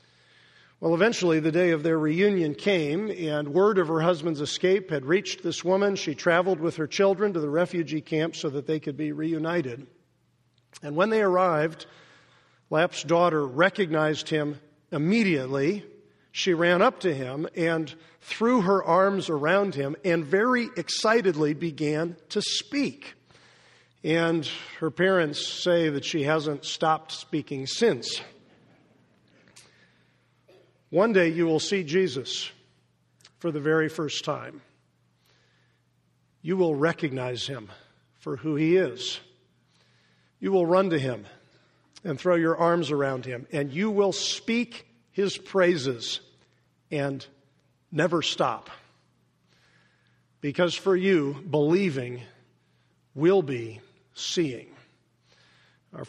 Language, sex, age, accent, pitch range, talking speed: English, male, 50-69, American, 140-180 Hz, 125 wpm